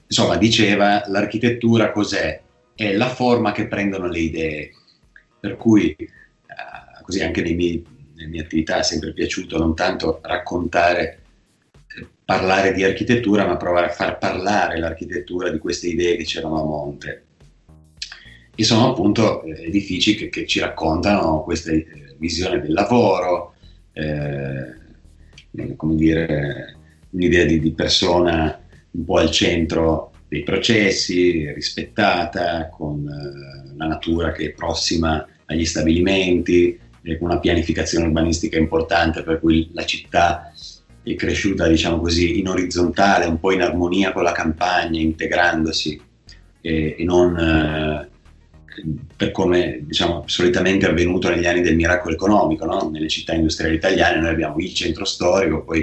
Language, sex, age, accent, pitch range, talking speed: Italian, male, 30-49, native, 80-90 Hz, 135 wpm